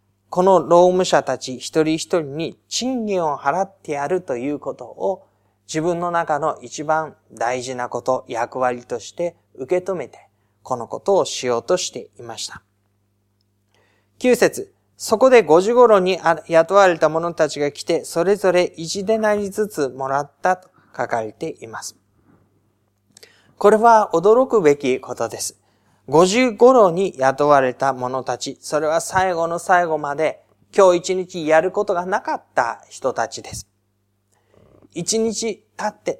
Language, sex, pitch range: Japanese, male, 130-195 Hz